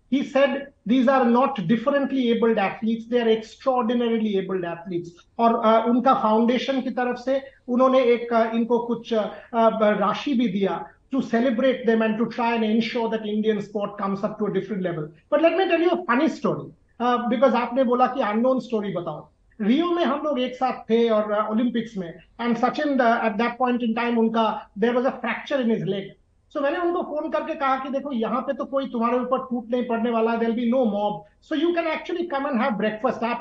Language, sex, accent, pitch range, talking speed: Hindi, male, native, 225-275 Hz, 205 wpm